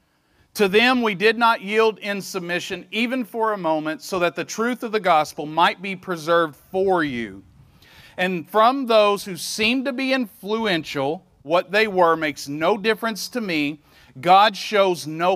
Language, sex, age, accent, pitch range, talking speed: English, male, 40-59, American, 155-215 Hz, 170 wpm